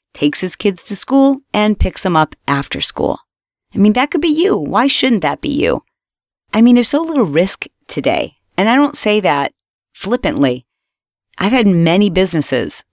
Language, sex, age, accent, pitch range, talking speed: English, female, 30-49, American, 155-215 Hz, 180 wpm